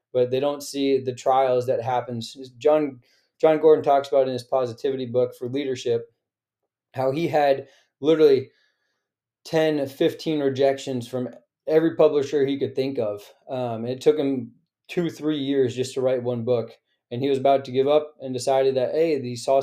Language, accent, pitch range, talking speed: English, American, 125-145 Hz, 180 wpm